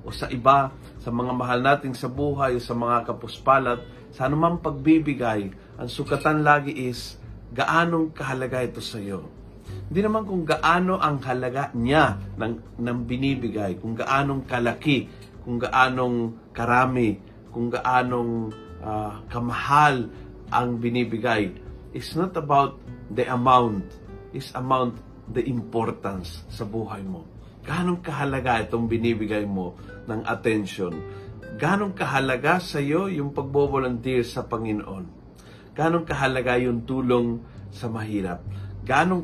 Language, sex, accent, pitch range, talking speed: Filipino, male, native, 110-140 Hz, 125 wpm